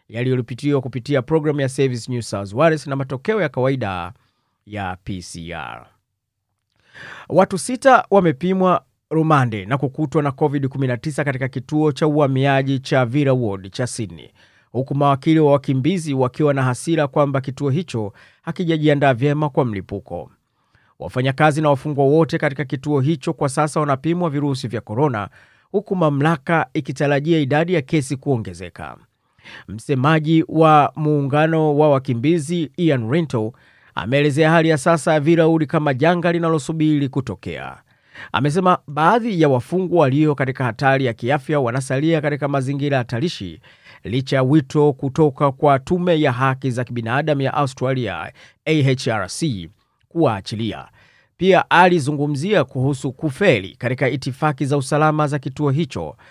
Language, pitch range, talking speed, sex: Swahili, 125-155 Hz, 130 wpm, male